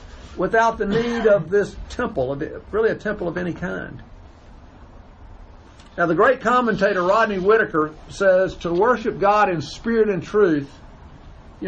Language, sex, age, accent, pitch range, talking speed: English, male, 50-69, American, 150-210 Hz, 140 wpm